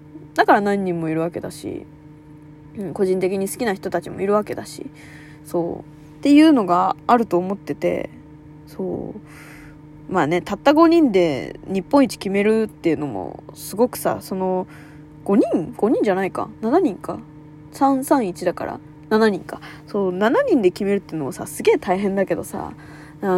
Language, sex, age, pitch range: Japanese, female, 20-39, 165-240 Hz